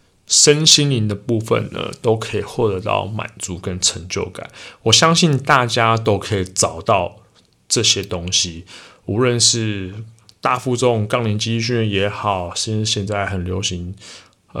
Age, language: 20-39, Chinese